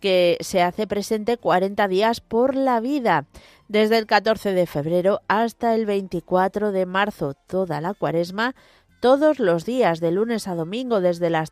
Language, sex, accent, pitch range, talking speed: Spanish, female, Spanish, 170-230 Hz, 160 wpm